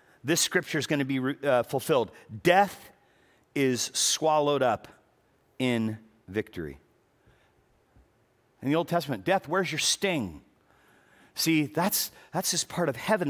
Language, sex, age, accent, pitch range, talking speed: English, male, 40-59, American, 130-180 Hz, 130 wpm